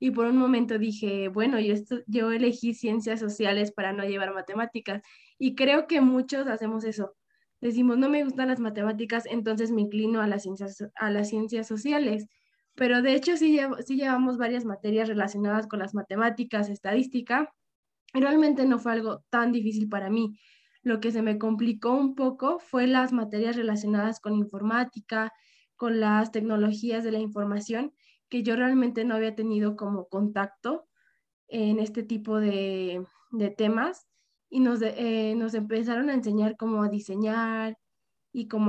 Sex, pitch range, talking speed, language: female, 210-240 Hz, 165 wpm, Spanish